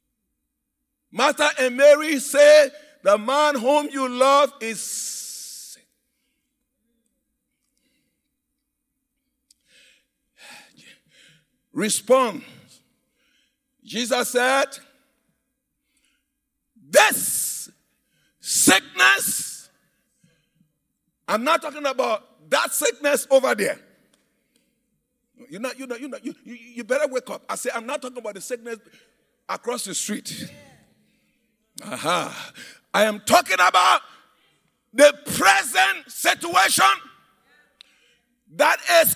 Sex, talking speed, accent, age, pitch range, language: male, 85 wpm, Nigerian, 50-69, 245-285 Hz, English